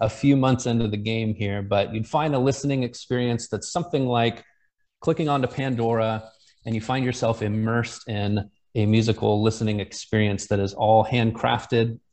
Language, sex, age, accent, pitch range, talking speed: English, male, 30-49, American, 110-125 Hz, 165 wpm